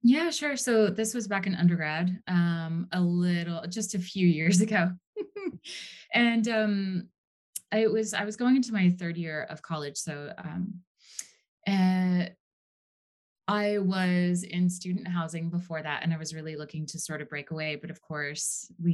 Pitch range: 160-195 Hz